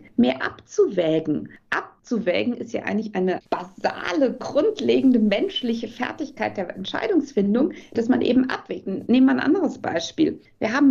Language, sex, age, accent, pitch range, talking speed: German, female, 50-69, German, 210-275 Hz, 130 wpm